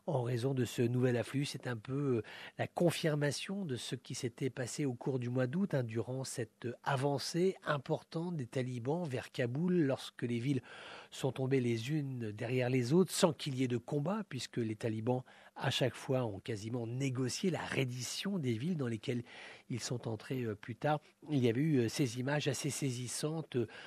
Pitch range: 120-145 Hz